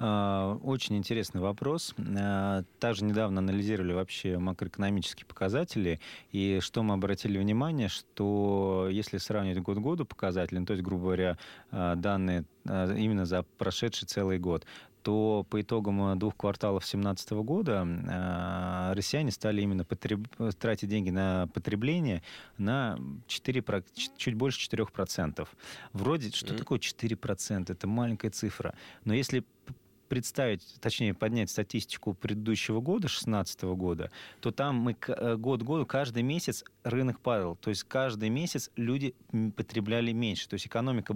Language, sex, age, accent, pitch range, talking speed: Russian, male, 30-49, native, 95-120 Hz, 125 wpm